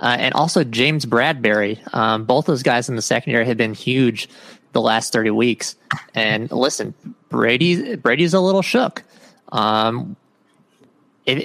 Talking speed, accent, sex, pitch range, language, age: 145 wpm, American, male, 115-155 Hz, English, 20-39